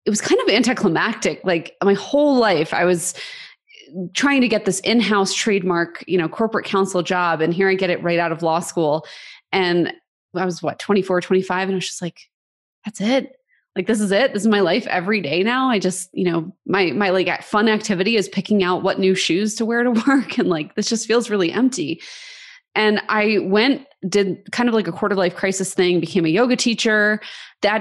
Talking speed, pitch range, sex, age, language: 215 wpm, 175-220 Hz, female, 20-39, English